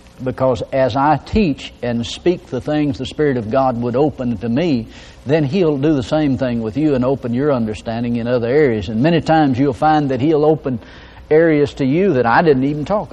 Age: 60-79